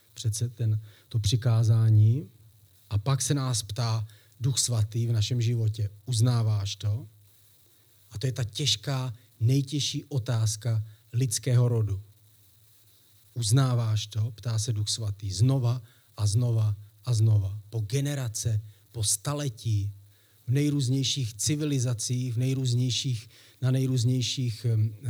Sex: male